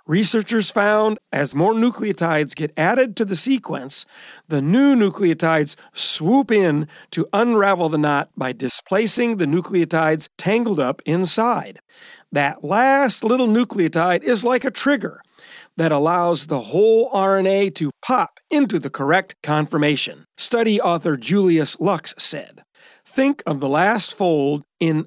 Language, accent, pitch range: English, American, 150-220 Hz